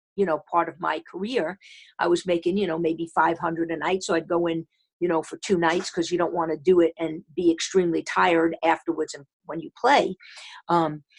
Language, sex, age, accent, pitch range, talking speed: English, female, 50-69, American, 165-185 Hz, 220 wpm